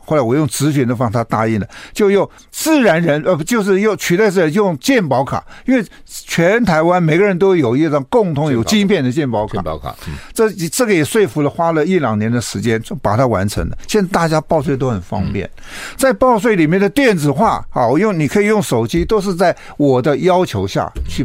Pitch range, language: 130-200 Hz, Chinese